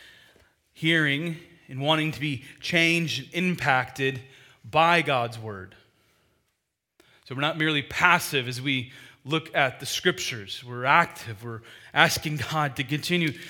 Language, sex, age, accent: English, male, 30-49, American